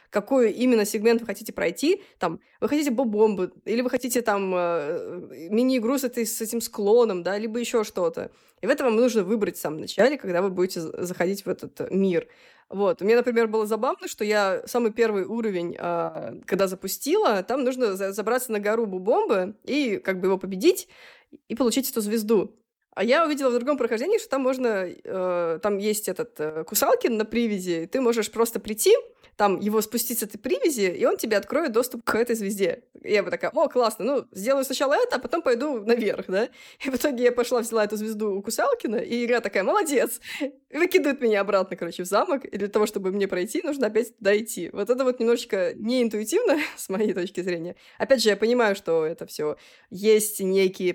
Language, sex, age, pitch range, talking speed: Russian, female, 20-39, 195-250 Hz, 210 wpm